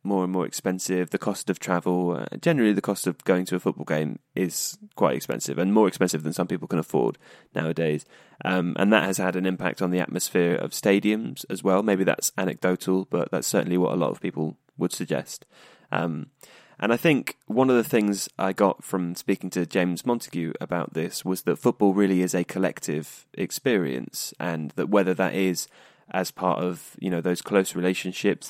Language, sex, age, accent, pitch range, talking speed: English, male, 20-39, British, 90-100 Hz, 200 wpm